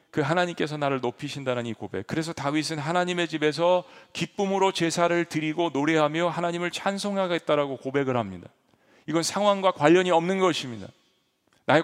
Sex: male